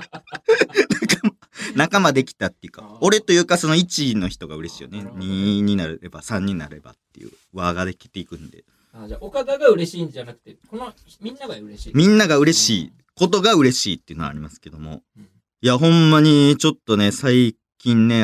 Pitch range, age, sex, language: 95-155 Hz, 40-59, male, Japanese